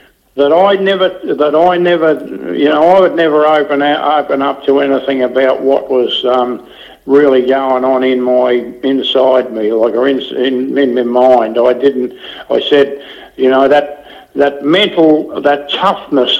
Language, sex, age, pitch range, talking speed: English, male, 60-79, 130-150 Hz, 170 wpm